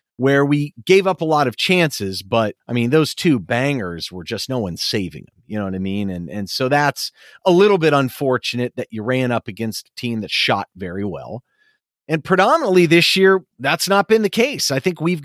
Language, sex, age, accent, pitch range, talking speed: English, male, 40-59, American, 115-170 Hz, 220 wpm